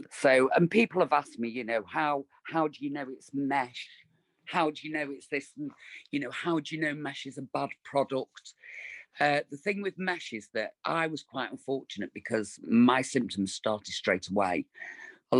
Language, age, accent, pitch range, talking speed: English, 40-59, British, 105-140 Hz, 200 wpm